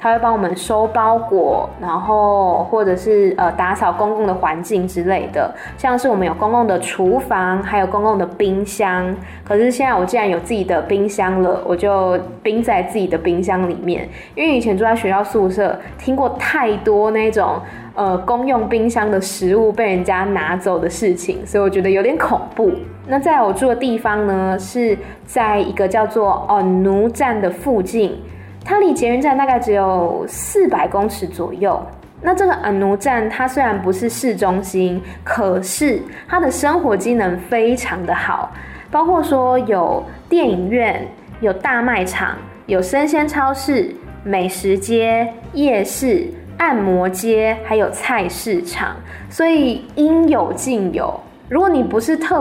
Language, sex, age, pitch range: Chinese, female, 10-29, 190-250 Hz